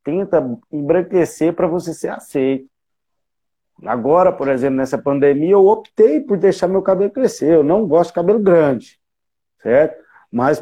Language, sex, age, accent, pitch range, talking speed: Portuguese, male, 40-59, Brazilian, 140-190 Hz, 145 wpm